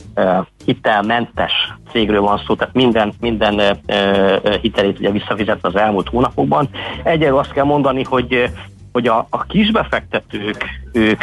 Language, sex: Hungarian, male